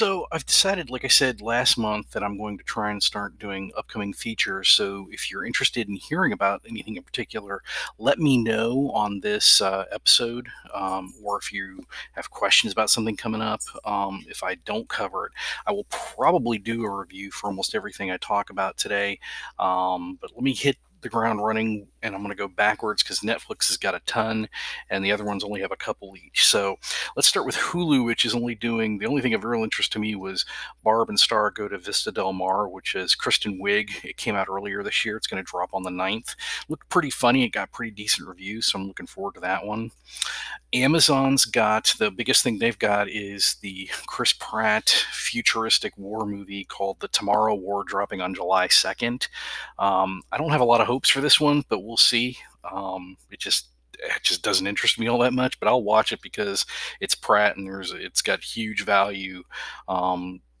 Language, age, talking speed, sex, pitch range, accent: English, 40-59, 210 wpm, male, 100-120 Hz, American